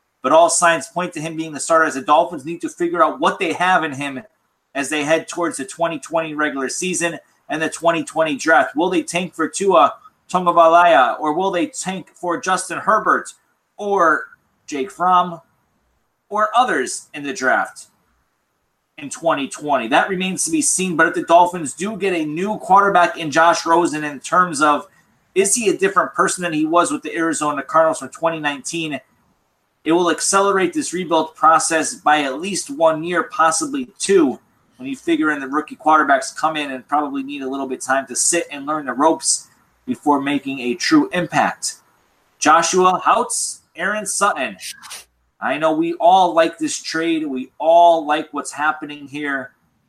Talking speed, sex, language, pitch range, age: 180 wpm, male, English, 150-195 Hz, 30-49